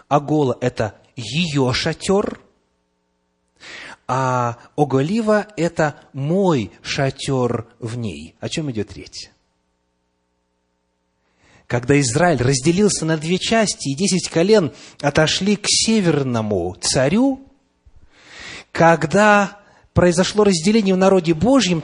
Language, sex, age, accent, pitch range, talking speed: Russian, male, 30-49, native, 105-180 Hz, 95 wpm